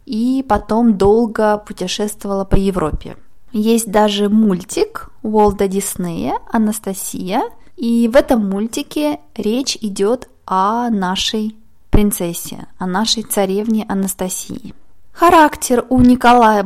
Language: Russian